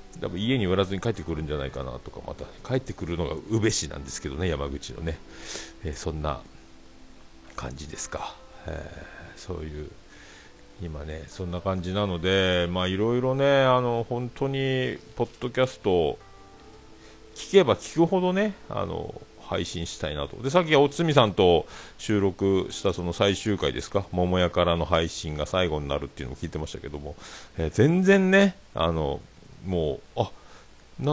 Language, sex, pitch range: Japanese, male, 80-130 Hz